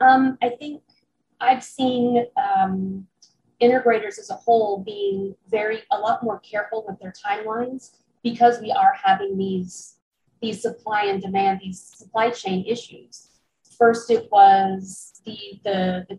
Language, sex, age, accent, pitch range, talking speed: English, female, 30-49, American, 195-240 Hz, 140 wpm